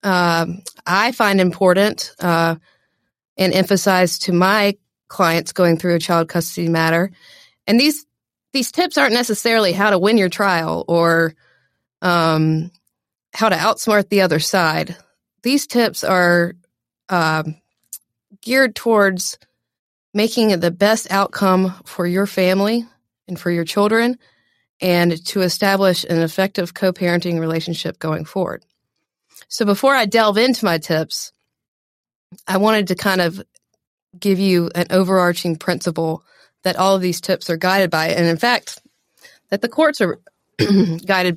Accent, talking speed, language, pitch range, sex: American, 135 wpm, English, 170-205 Hz, female